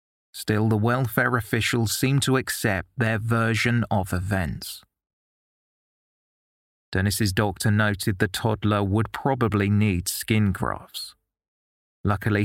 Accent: British